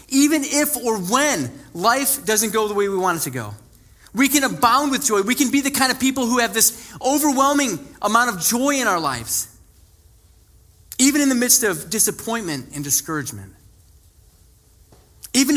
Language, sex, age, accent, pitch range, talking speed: English, male, 30-49, American, 160-235 Hz, 175 wpm